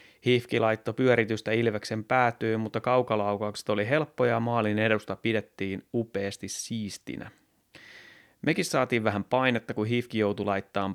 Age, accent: 30-49, native